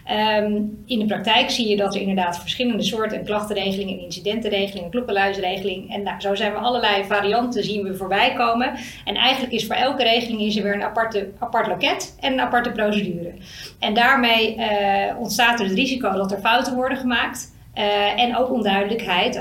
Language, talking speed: Dutch, 185 wpm